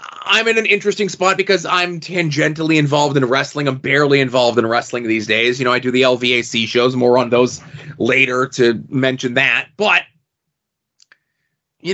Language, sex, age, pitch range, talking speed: English, male, 30-49, 125-170 Hz, 170 wpm